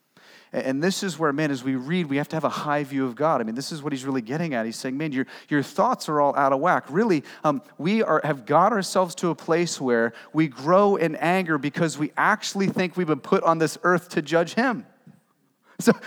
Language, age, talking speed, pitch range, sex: English, 30-49, 245 wpm, 155-200 Hz, male